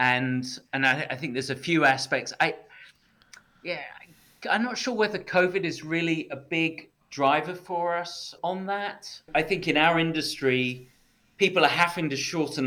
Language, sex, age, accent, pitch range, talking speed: English, male, 30-49, British, 130-155 Hz, 170 wpm